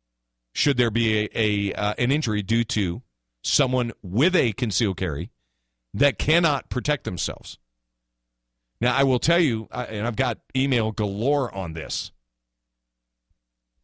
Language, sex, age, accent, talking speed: English, male, 40-59, American, 140 wpm